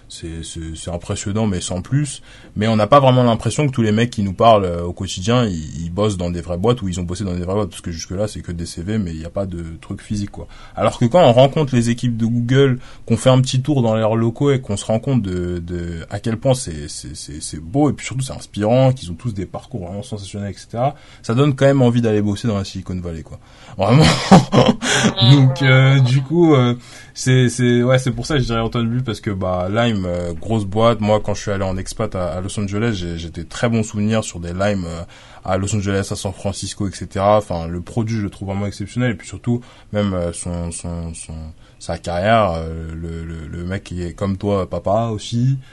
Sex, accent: male, French